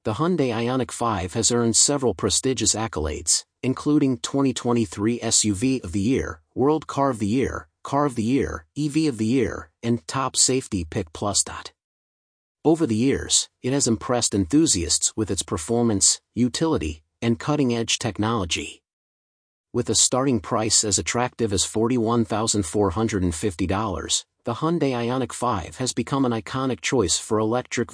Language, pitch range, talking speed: English, 105-130 Hz, 145 wpm